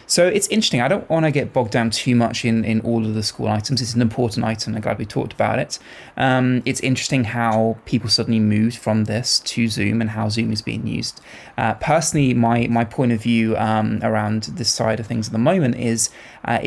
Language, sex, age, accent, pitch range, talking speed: English, male, 20-39, British, 115-130 Hz, 225 wpm